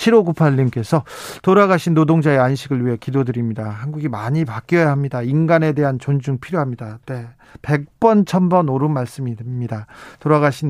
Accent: native